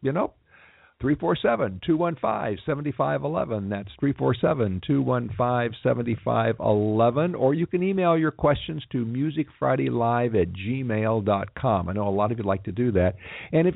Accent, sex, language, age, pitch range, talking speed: American, male, English, 50-69, 110-150 Hz, 195 wpm